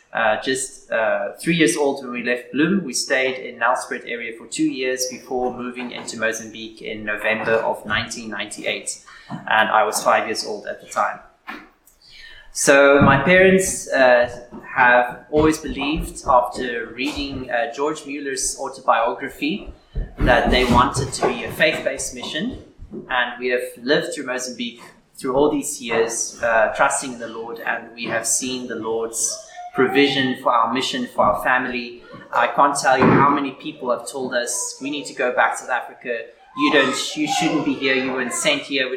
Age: 30-49